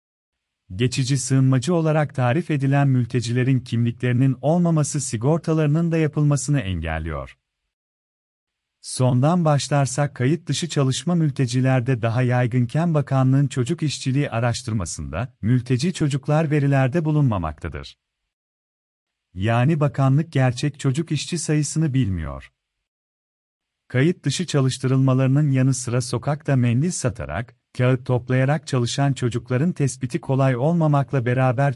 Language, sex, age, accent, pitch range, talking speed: Turkish, male, 40-59, native, 125-150 Hz, 95 wpm